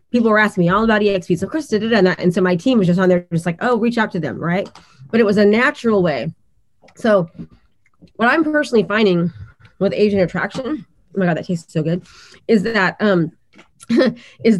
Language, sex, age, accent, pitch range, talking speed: English, female, 20-39, American, 175-210 Hz, 220 wpm